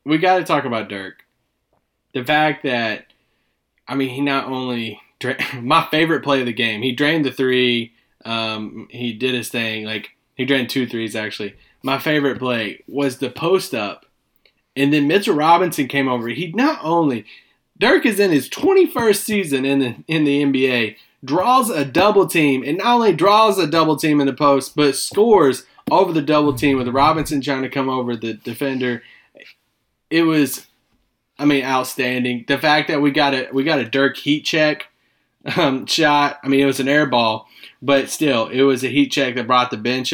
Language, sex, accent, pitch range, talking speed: English, male, American, 115-145 Hz, 190 wpm